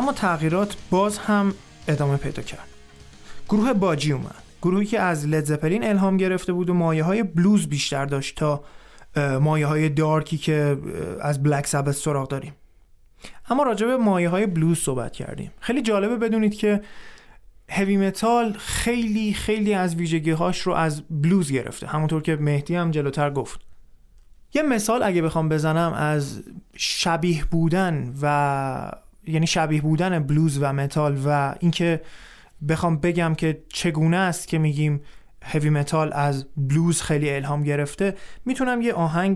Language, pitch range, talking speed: Persian, 145-190 Hz, 145 wpm